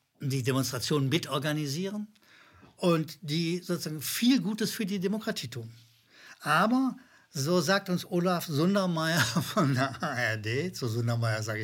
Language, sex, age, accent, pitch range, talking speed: German, male, 60-79, German, 120-200 Hz, 125 wpm